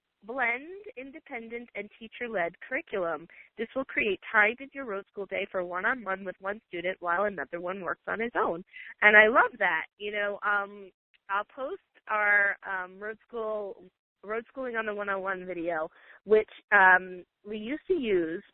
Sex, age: female, 20-39